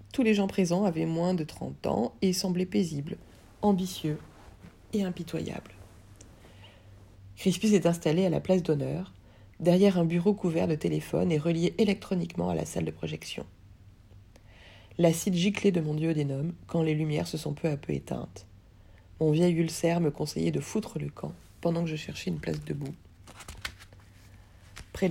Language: French